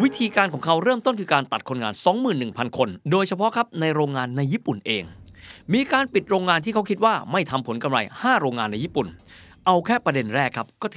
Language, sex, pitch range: Thai, male, 120-185 Hz